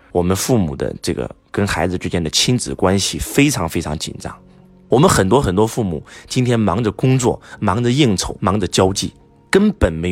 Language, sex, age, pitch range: Chinese, male, 20-39, 85-115 Hz